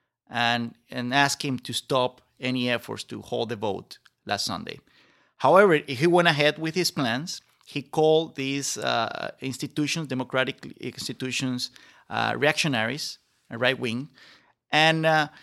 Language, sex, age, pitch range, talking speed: English, male, 30-49, 120-150 Hz, 125 wpm